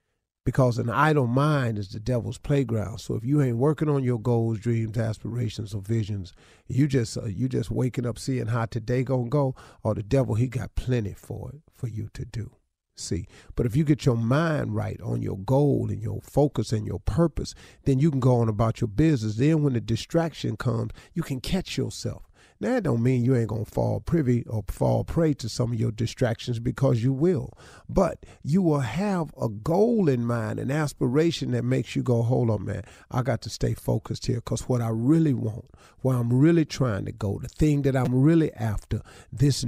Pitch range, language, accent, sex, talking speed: 110-140 Hz, English, American, male, 210 wpm